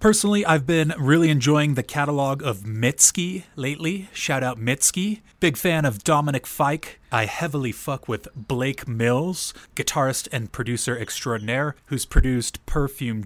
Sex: male